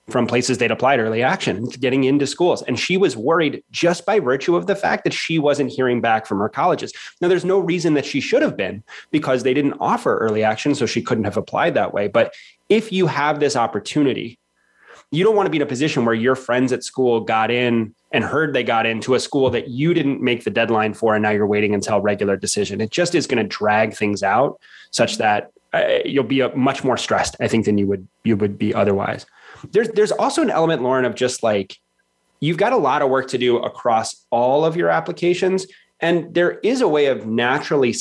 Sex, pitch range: male, 110-140 Hz